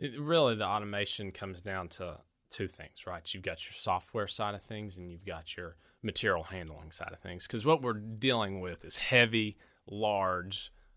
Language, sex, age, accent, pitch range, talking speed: English, male, 30-49, American, 90-110 Hz, 180 wpm